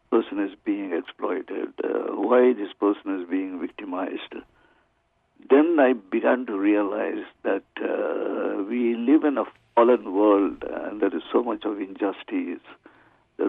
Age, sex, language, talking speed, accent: 70-89, male, English, 140 wpm, Indian